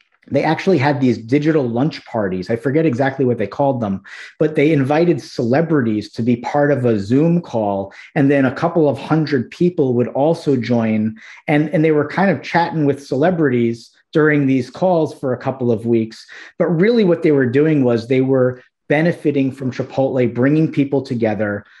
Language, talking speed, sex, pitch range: English, 185 wpm, male, 120-145 Hz